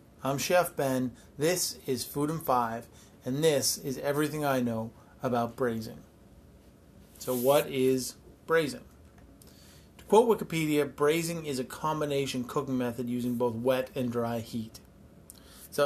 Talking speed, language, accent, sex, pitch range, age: 135 wpm, English, American, male, 120-145 Hz, 30-49